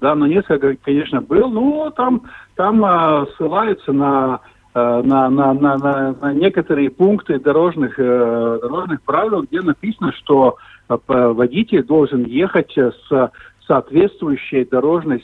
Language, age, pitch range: Russian, 50-69, 125-165 Hz